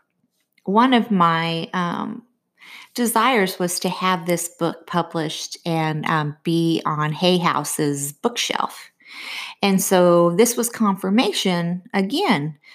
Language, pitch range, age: English, 170-215 Hz, 30-49